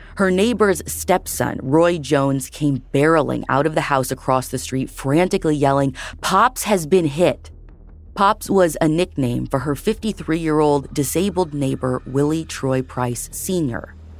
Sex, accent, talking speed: female, American, 140 wpm